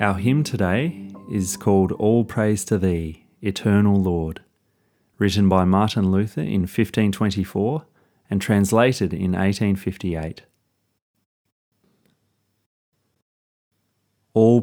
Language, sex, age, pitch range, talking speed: English, male, 30-49, 95-115 Hz, 90 wpm